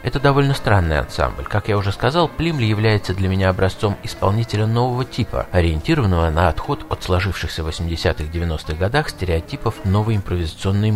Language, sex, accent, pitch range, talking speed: Russian, male, native, 85-115 Hz, 150 wpm